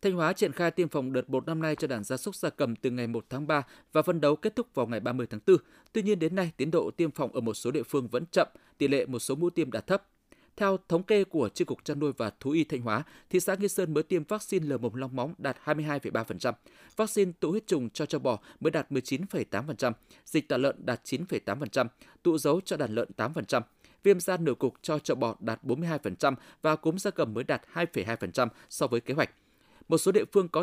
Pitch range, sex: 130-175 Hz, male